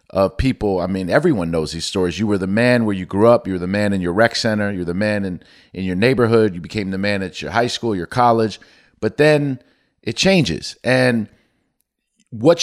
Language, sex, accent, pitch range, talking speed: English, male, American, 100-125 Hz, 225 wpm